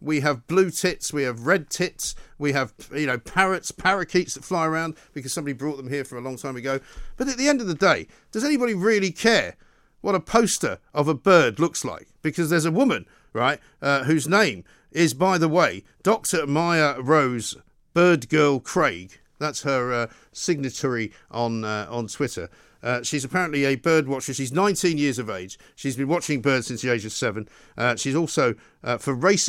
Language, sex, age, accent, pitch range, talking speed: English, male, 50-69, British, 135-180 Hz, 200 wpm